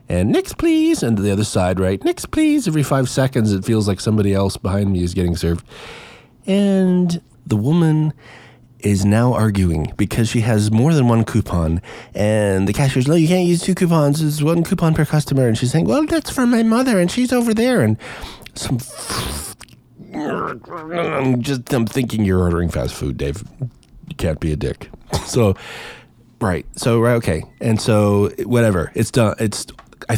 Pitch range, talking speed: 95-140 Hz, 180 wpm